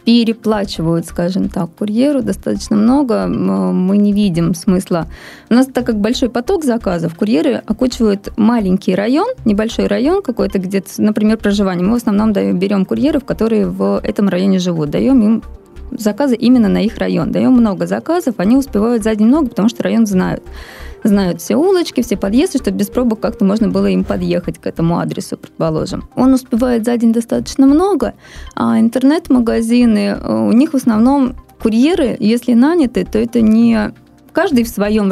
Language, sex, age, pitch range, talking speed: Russian, female, 20-39, 200-250 Hz, 160 wpm